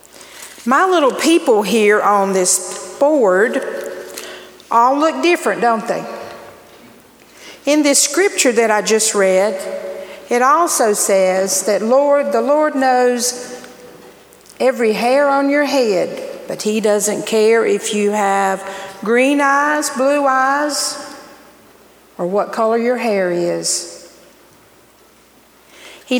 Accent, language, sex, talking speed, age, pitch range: American, English, female, 115 wpm, 50-69, 200-270 Hz